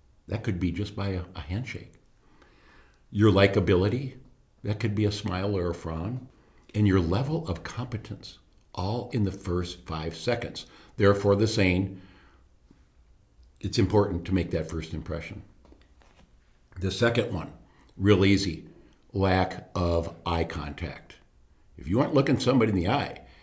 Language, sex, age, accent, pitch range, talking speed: English, male, 60-79, American, 85-115 Hz, 140 wpm